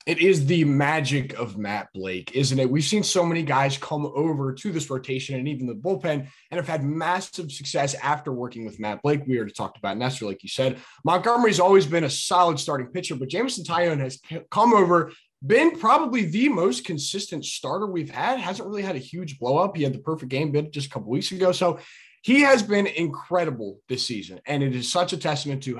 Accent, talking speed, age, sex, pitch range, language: American, 220 wpm, 20-39, male, 130-185 Hz, English